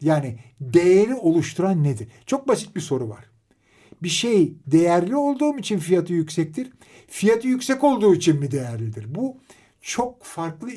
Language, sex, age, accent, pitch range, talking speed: Turkish, male, 50-69, native, 135-185 Hz, 140 wpm